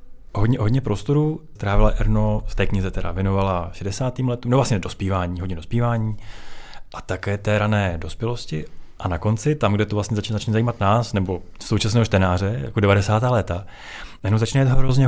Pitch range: 100-125 Hz